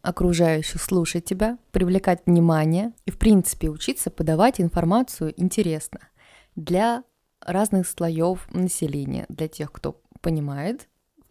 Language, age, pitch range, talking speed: Russian, 20-39, 165-210 Hz, 110 wpm